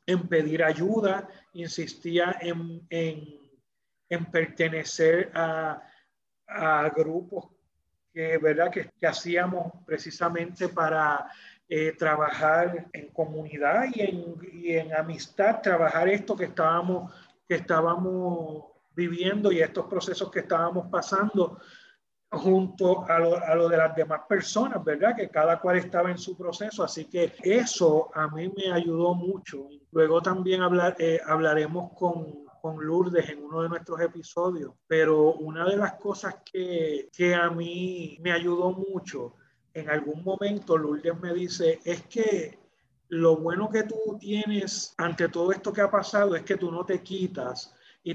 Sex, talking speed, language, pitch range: male, 140 wpm, Spanish, 160-185 Hz